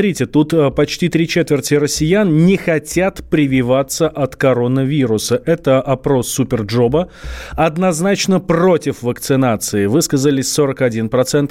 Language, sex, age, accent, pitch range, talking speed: Russian, male, 30-49, native, 125-165 Hz, 95 wpm